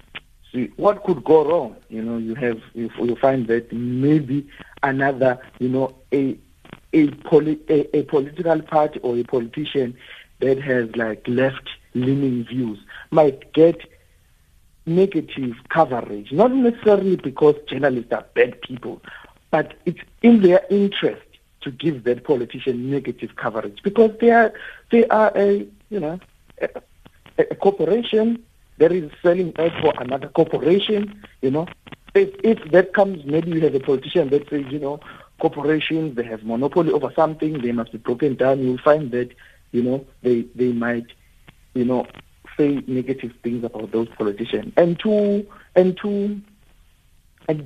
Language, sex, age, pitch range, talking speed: English, male, 50-69, 125-175 Hz, 150 wpm